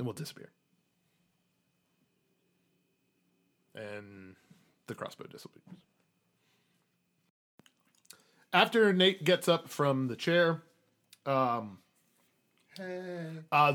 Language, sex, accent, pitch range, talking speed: English, male, American, 125-160 Hz, 70 wpm